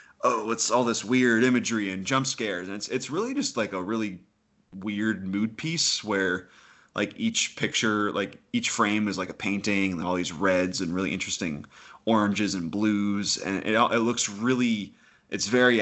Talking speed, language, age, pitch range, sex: 180 wpm, English, 20-39, 100-120 Hz, male